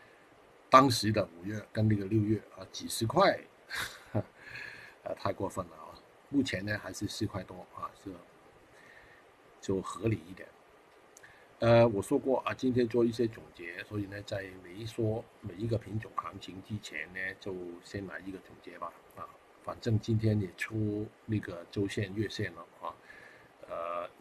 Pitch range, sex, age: 95-115 Hz, male, 50-69